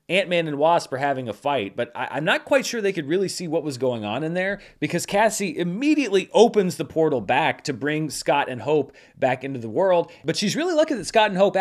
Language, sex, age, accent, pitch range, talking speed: English, male, 30-49, American, 130-170 Hz, 240 wpm